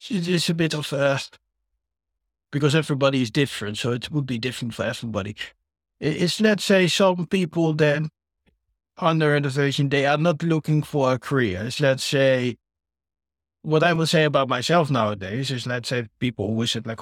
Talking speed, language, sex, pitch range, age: 170 wpm, English, male, 115-145 Hz, 60-79